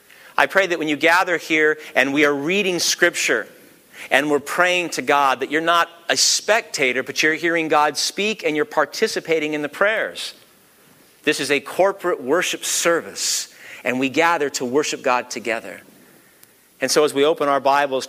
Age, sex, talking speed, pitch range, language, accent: 50-69, male, 175 wpm, 135-160 Hz, English, American